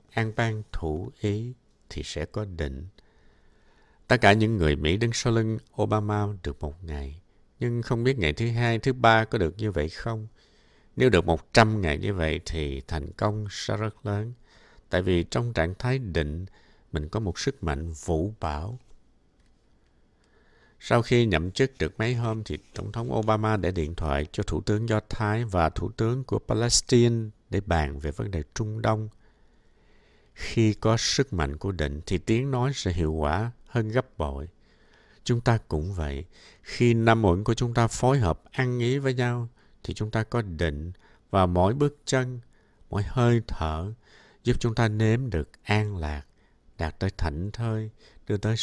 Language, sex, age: Vietnamese, male, 60-79